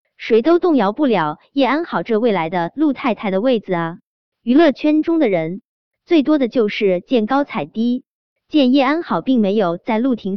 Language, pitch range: Chinese, 195-280 Hz